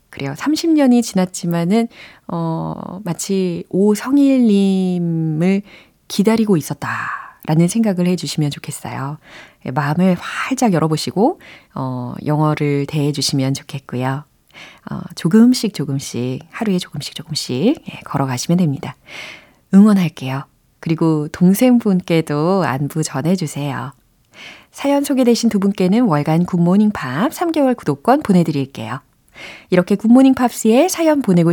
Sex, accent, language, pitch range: female, native, Korean, 155-235 Hz